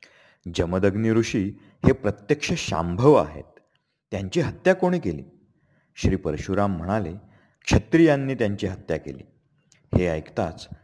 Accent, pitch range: native, 95-140 Hz